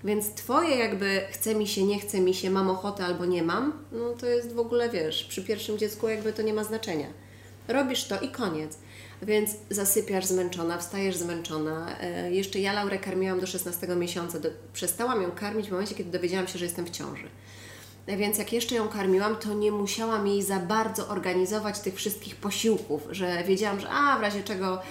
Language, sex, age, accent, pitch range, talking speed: Polish, female, 30-49, native, 165-210 Hz, 190 wpm